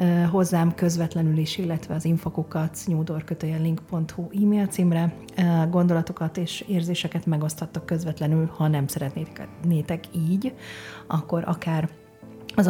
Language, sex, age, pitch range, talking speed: Hungarian, female, 30-49, 165-190 Hz, 100 wpm